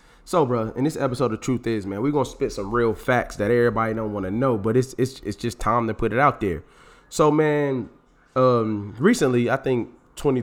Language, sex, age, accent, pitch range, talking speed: English, male, 20-39, American, 105-130 Hz, 220 wpm